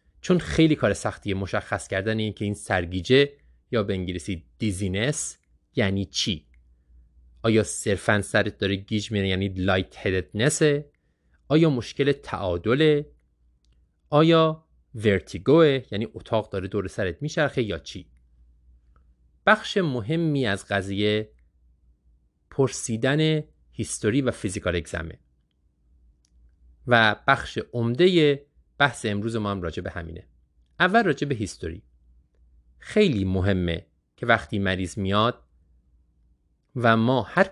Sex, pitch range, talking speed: male, 75-125 Hz, 110 wpm